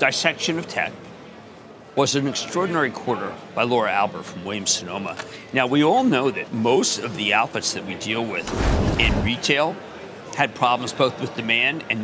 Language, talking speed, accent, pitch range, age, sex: English, 165 wpm, American, 125-165 Hz, 50-69, male